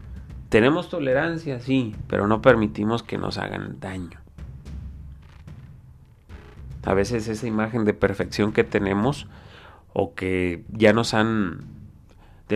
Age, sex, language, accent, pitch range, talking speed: 30-49, male, Spanish, Mexican, 85-110 Hz, 115 wpm